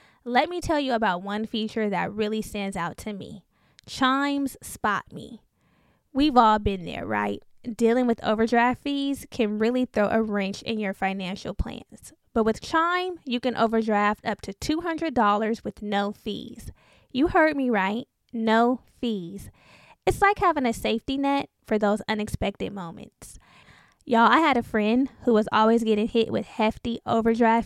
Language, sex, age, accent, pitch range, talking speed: English, female, 10-29, American, 215-265 Hz, 165 wpm